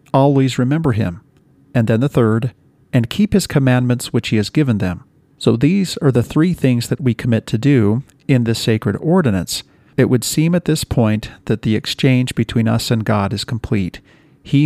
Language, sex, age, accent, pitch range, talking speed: English, male, 50-69, American, 110-135 Hz, 190 wpm